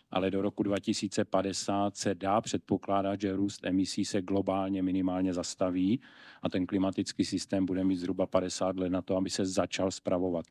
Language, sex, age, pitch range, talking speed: Czech, male, 40-59, 95-100 Hz, 165 wpm